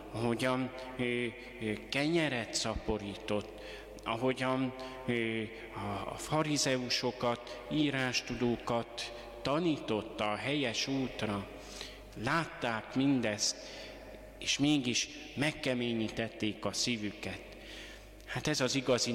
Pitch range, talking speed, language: 110-135 Hz, 75 wpm, Hungarian